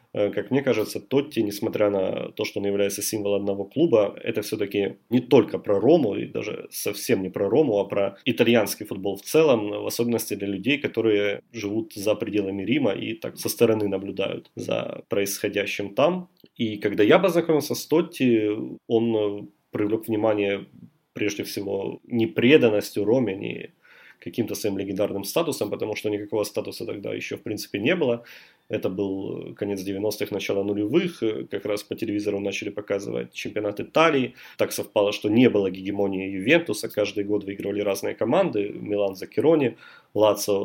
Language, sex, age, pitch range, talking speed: Russian, male, 30-49, 100-110 Hz, 155 wpm